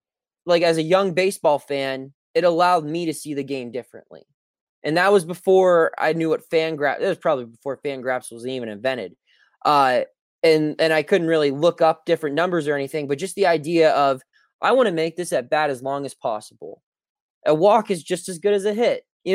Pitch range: 140-180 Hz